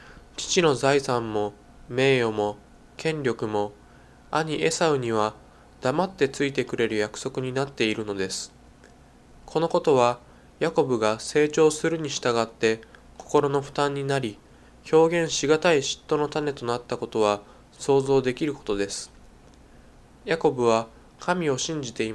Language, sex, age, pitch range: Japanese, male, 20-39, 110-150 Hz